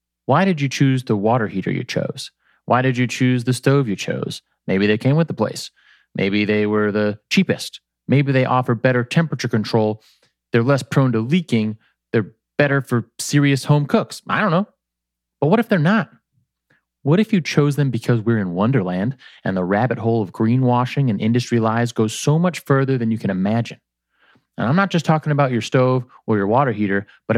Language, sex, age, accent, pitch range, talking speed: English, male, 30-49, American, 105-140 Hz, 200 wpm